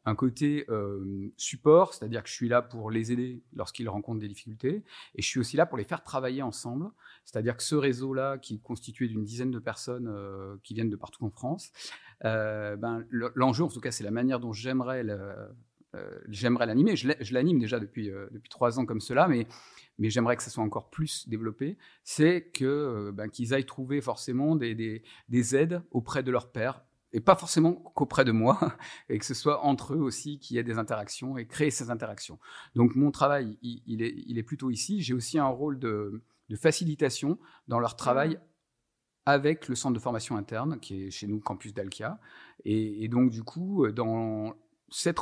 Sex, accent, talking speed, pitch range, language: male, French, 210 wpm, 110-140 Hz, French